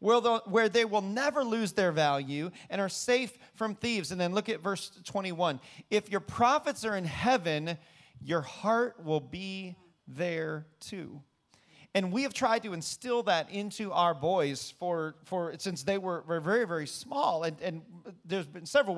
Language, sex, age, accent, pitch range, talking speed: English, male, 30-49, American, 165-215 Hz, 170 wpm